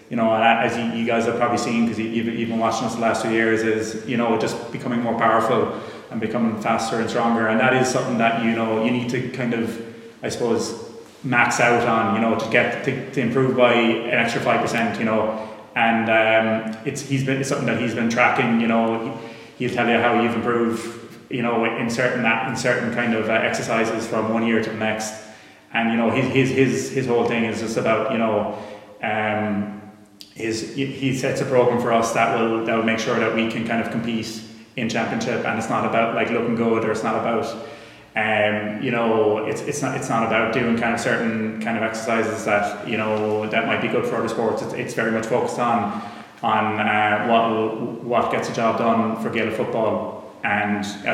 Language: English